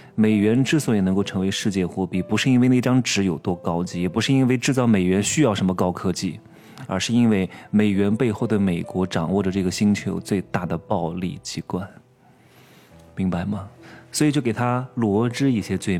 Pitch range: 95-125 Hz